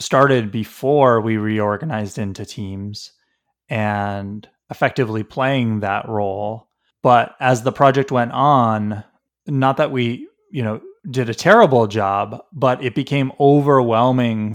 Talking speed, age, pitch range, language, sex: 125 wpm, 30-49, 110-135 Hz, English, male